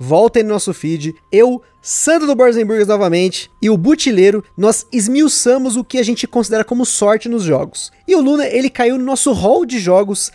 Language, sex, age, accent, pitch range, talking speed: Portuguese, male, 20-39, Brazilian, 190-250 Hz, 190 wpm